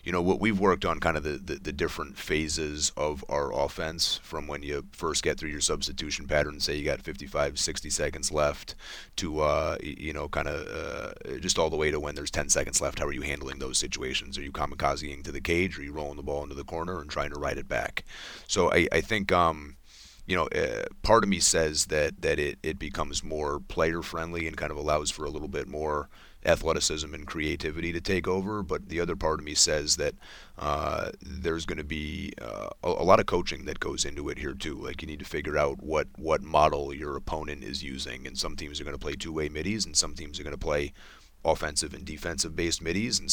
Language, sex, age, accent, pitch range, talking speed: English, male, 30-49, American, 75-85 Hz, 235 wpm